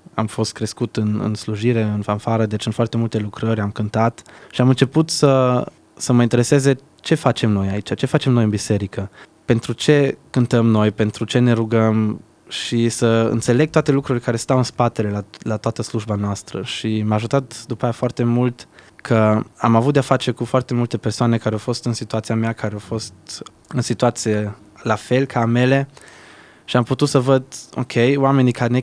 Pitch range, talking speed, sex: 110-125 Hz, 195 wpm, male